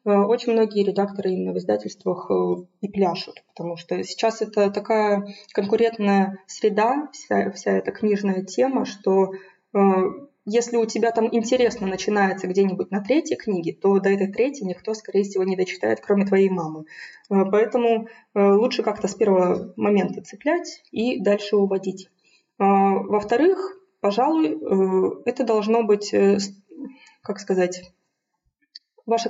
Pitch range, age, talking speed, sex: 195-235 Hz, 20-39, 125 wpm, female